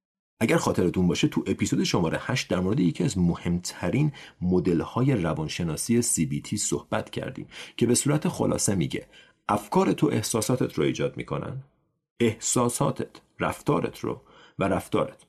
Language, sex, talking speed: Persian, male, 130 wpm